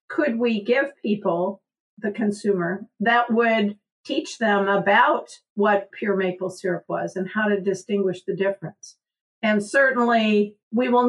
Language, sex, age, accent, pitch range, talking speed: English, female, 50-69, American, 205-250 Hz, 140 wpm